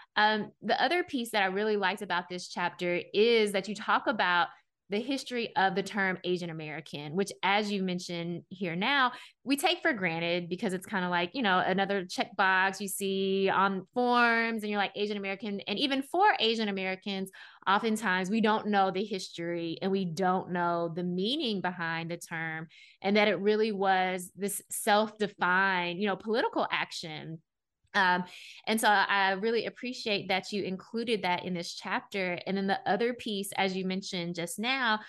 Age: 20-39